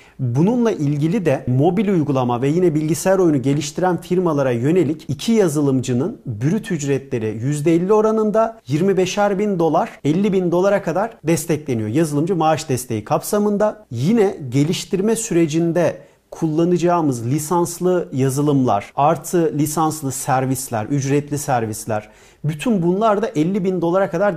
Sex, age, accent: male, 40-59, native